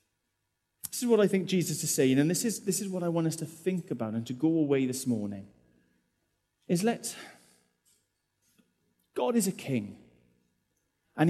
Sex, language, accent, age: male, English, British, 30-49